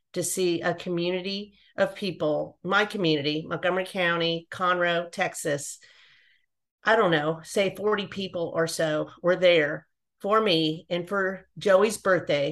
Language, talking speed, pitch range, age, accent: English, 135 wpm, 165-190 Hz, 40-59, American